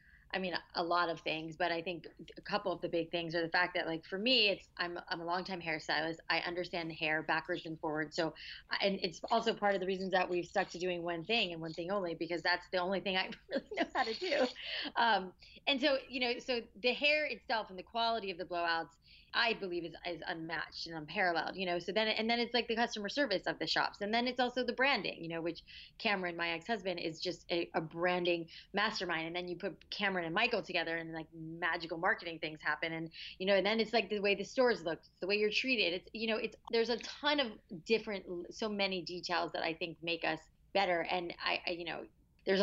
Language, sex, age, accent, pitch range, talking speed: English, female, 30-49, American, 165-200 Hz, 245 wpm